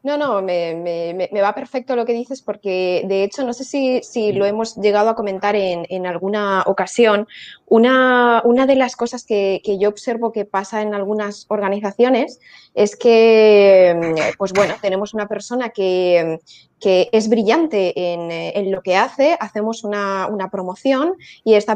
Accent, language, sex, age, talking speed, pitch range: Spanish, Spanish, female, 20-39, 170 wpm, 195-235 Hz